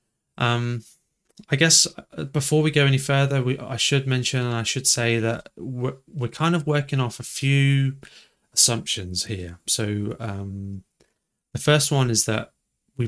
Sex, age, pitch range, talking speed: male, 30-49, 105-130 Hz, 160 wpm